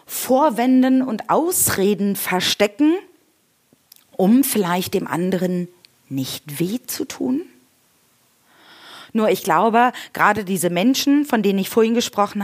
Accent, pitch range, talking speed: German, 180-255 Hz, 110 wpm